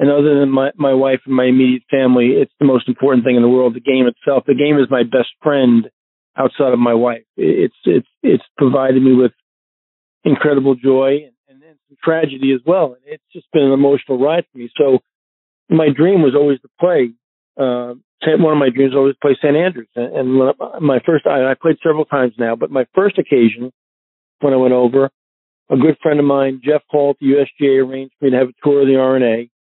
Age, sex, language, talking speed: 40-59, male, English, 225 wpm